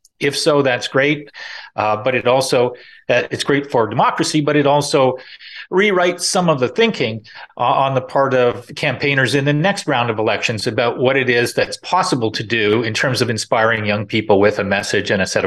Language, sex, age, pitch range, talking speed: English, male, 40-59, 125-155 Hz, 205 wpm